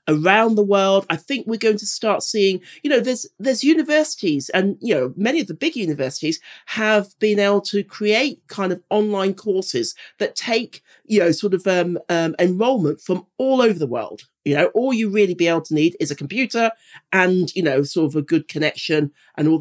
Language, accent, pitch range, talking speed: English, British, 160-225 Hz, 210 wpm